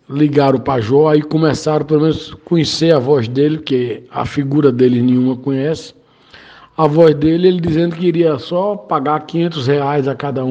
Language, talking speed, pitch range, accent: Portuguese, 185 wpm, 130-160 Hz, Brazilian